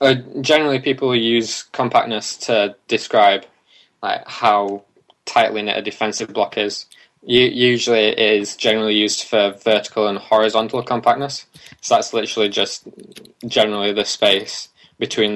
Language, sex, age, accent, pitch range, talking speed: English, male, 10-29, British, 100-120 Hz, 135 wpm